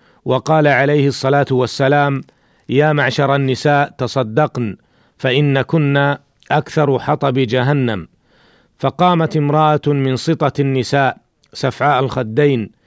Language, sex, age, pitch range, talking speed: Arabic, male, 40-59, 130-150 Hz, 95 wpm